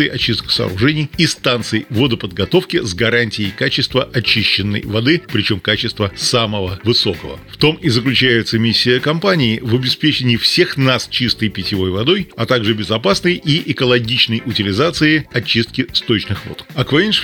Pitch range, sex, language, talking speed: 110-145 Hz, male, Russian, 130 wpm